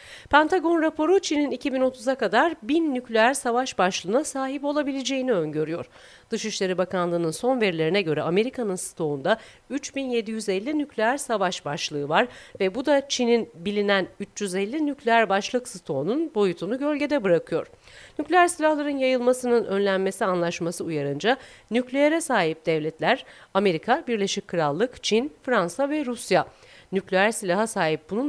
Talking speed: 120 wpm